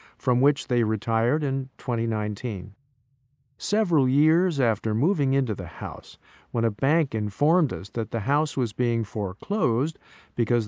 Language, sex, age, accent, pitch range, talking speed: English, male, 50-69, American, 115-140 Hz, 140 wpm